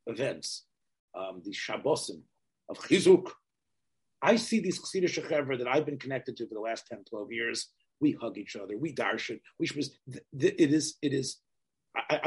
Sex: male